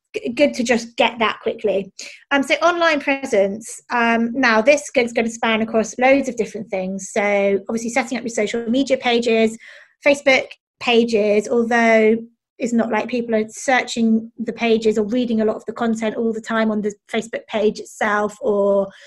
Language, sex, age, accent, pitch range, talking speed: English, female, 20-39, British, 205-235 Hz, 180 wpm